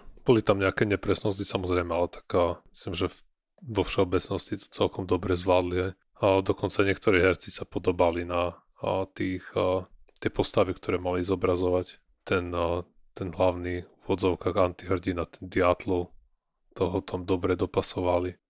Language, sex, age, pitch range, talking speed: Slovak, male, 30-49, 90-100 Hz, 140 wpm